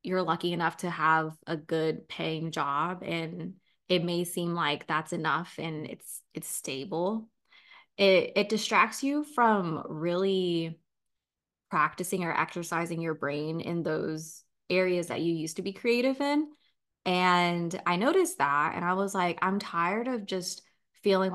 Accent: American